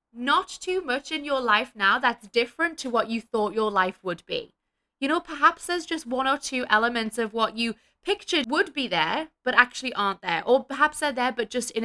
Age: 20-39